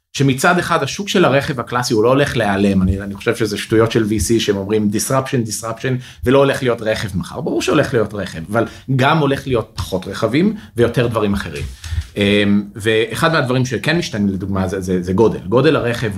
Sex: male